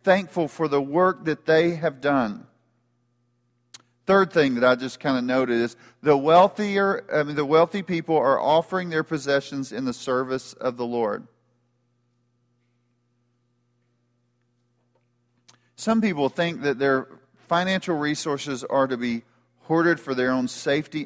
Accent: American